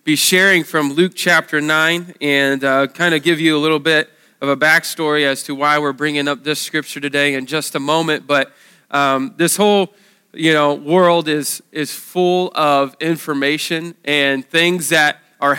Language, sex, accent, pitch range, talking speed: English, male, American, 150-170 Hz, 180 wpm